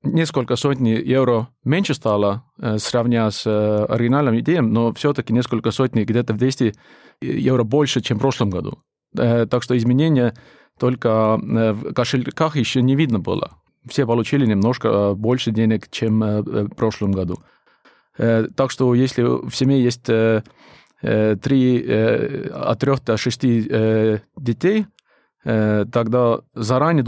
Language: Russian